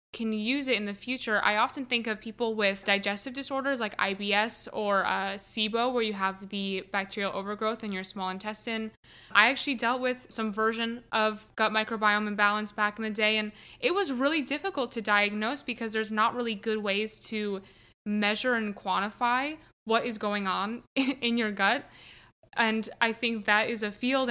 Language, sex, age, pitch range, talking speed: English, female, 10-29, 210-245 Hz, 185 wpm